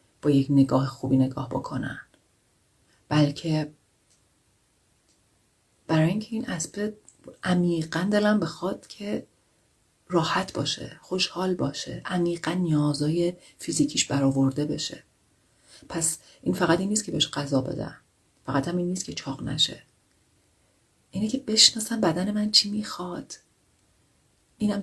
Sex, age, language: female, 40-59, Persian